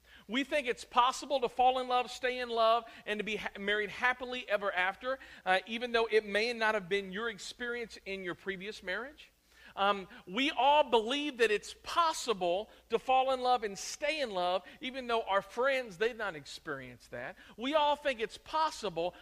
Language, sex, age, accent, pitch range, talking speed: English, male, 50-69, American, 200-265 Hz, 185 wpm